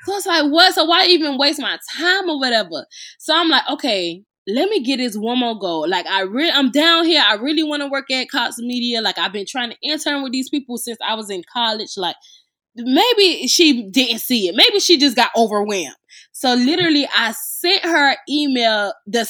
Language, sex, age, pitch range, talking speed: English, female, 10-29, 230-335 Hz, 220 wpm